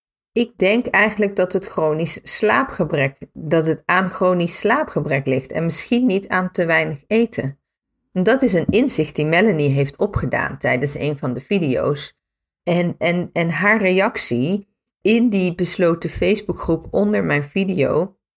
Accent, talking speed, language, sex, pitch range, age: Dutch, 145 wpm, Dutch, female, 155-205 Hz, 40-59